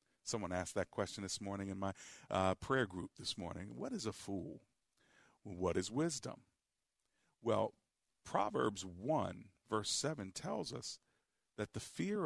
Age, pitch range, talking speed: 50-69, 95-120 Hz, 145 wpm